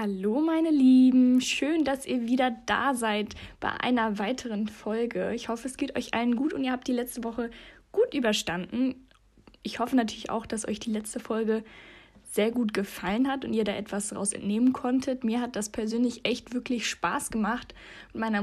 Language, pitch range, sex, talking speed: German, 205-250 Hz, female, 190 wpm